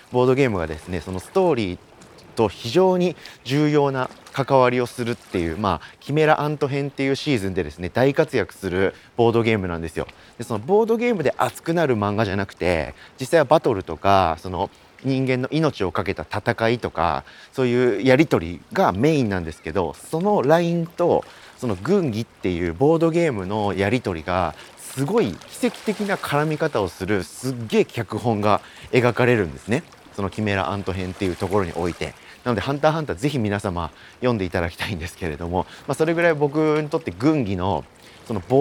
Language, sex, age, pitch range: Japanese, male, 30-49, 95-155 Hz